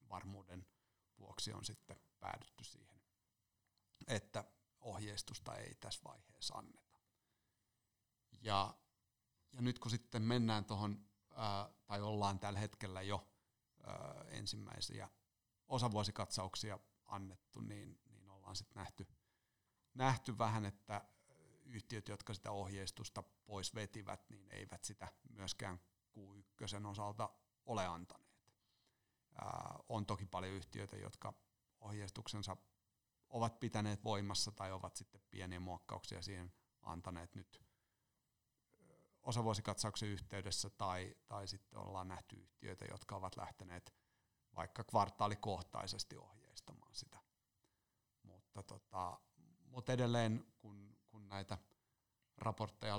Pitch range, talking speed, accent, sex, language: 100-110 Hz, 100 wpm, native, male, Finnish